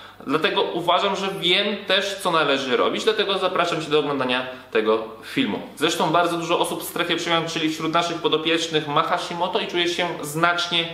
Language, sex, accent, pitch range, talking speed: Polish, male, native, 135-170 Hz, 175 wpm